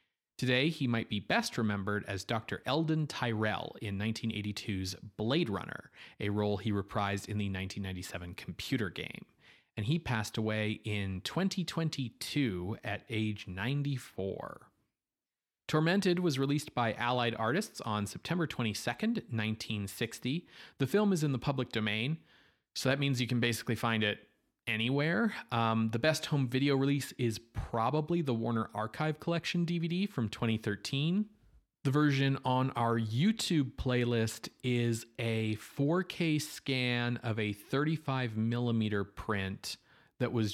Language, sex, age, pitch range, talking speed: English, male, 30-49, 105-135 Hz, 135 wpm